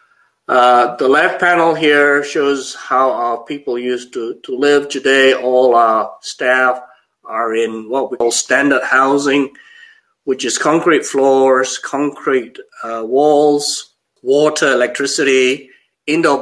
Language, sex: English, male